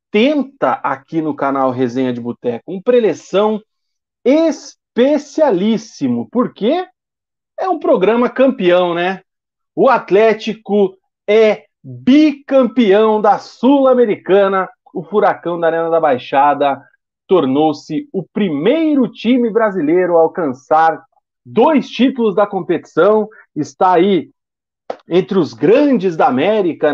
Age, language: 40-59, Portuguese